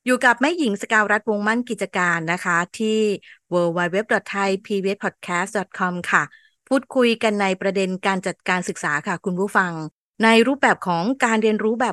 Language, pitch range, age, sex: Thai, 190-235 Hz, 20-39, female